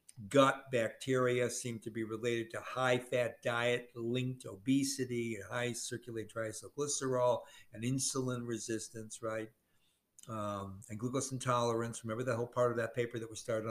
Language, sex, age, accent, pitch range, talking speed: English, male, 60-79, American, 105-125 Hz, 155 wpm